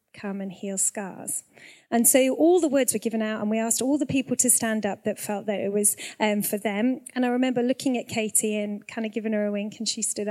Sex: female